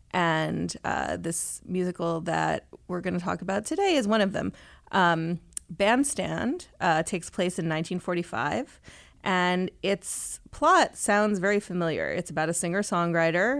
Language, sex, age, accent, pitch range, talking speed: English, female, 30-49, American, 155-185 Hz, 135 wpm